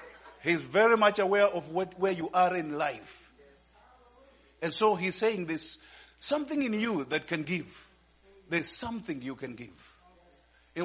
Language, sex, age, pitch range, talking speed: English, male, 50-69, 150-205 Hz, 155 wpm